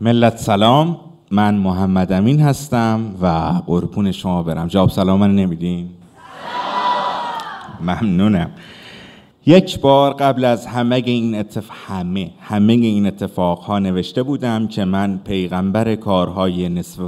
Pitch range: 90-110 Hz